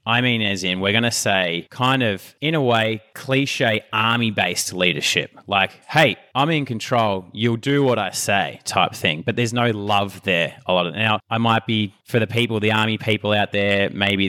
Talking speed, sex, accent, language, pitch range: 200 wpm, male, Australian, English, 95-120 Hz